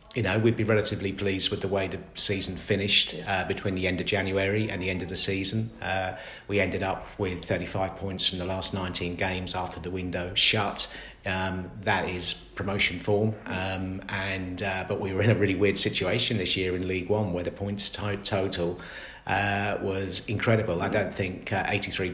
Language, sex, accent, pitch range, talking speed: English, male, British, 90-100 Hz, 200 wpm